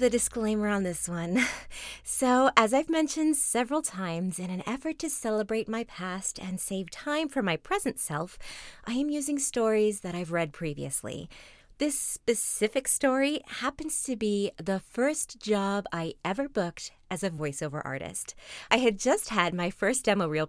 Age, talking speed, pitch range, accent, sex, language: 30-49, 165 wpm, 170-235 Hz, American, female, English